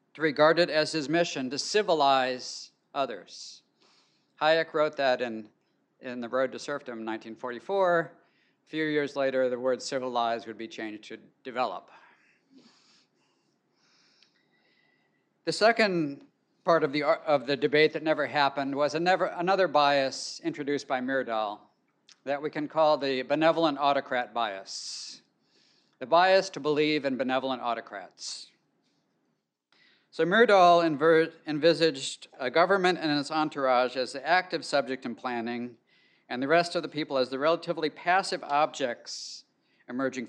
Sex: male